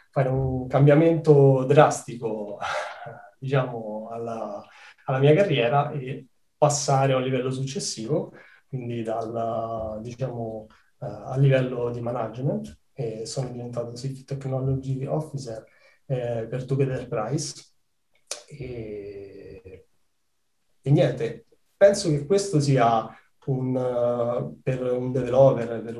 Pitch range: 120-140 Hz